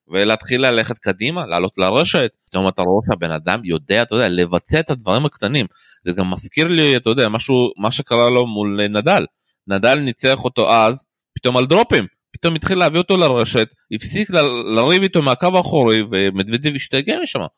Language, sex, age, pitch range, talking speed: Hebrew, male, 20-39, 115-170 Hz, 170 wpm